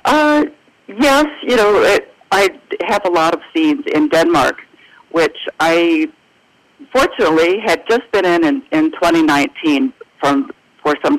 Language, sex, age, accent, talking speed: English, female, 50-69, American, 140 wpm